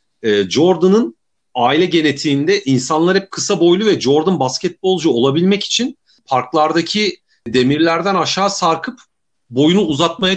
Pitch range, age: 130-180 Hz, 40-59